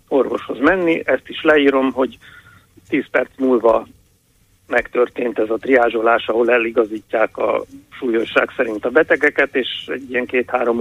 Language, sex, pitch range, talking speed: Hungarian, male, 115-155 Hz, 130 wpm